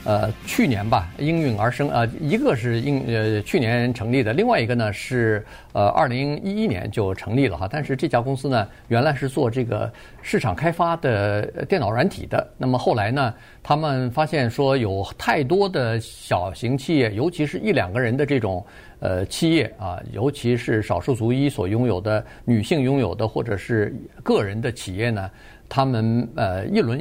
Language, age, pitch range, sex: Chinese, 50-69, 105-135 Hz, male